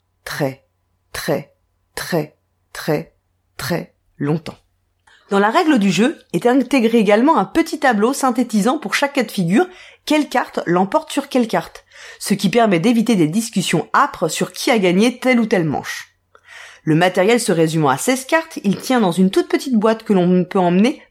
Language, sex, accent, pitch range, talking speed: French, female, French, 175-260 Hz, 175 wpm